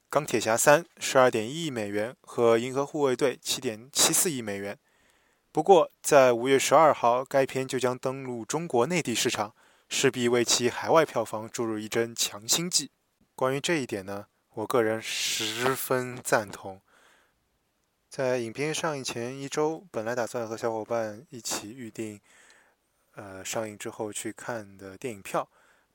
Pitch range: 110-135 Hz